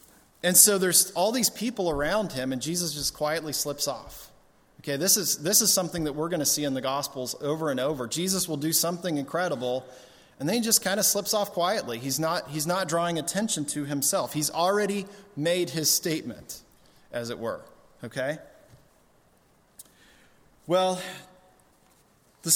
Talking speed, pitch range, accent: 170 wpm, 150-205 Hz, American